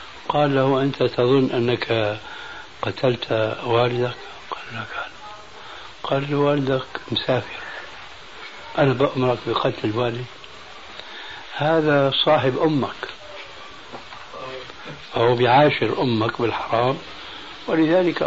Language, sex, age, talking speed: Arabic, male, 60-79, 85 wpm